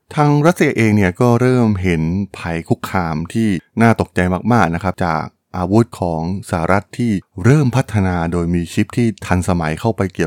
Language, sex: Thai, male